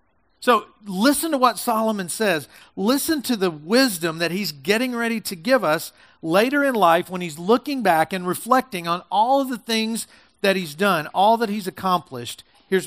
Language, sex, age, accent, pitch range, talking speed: English, male, 50-69, American, 170-225 Hz, 180 wpm